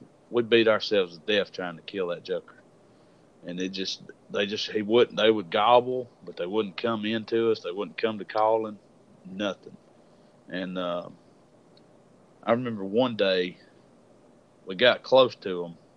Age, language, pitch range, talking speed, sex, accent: 40-59, English, 100-120 Hz, 160 wpm, male, American